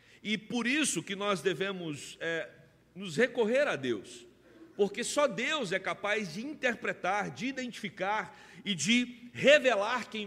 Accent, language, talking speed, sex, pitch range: Brazilian, Portuguese, 135 wpm, male, 190-245 Hz